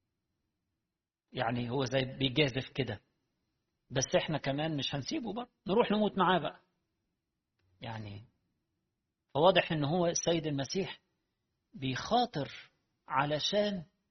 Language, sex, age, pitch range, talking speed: Arabic, male, 50-69, 130-180 Hz, 100 wpm